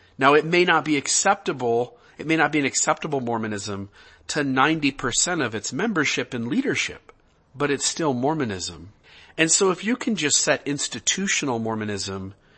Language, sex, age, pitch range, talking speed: English, male, 40-59, 110-160 Hz, 155 wpm